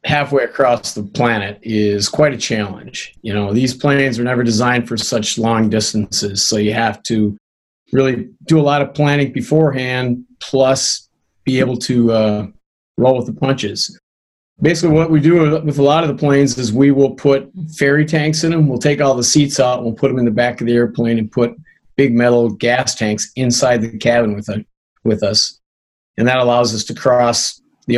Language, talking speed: English, 195 wpm